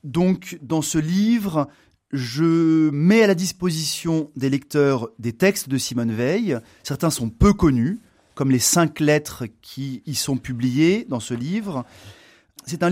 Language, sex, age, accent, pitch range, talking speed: French, male, 30-49, French, 135-190 Hz, 155 wpm